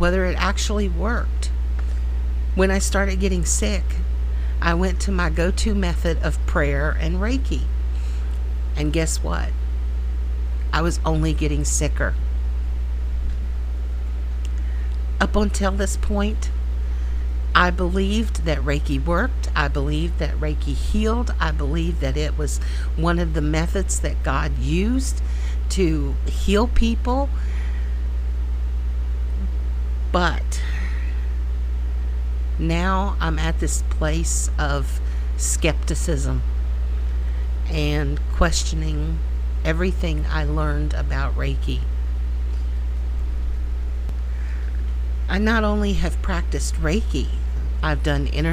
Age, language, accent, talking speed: 50-69, English, American, 100 wpm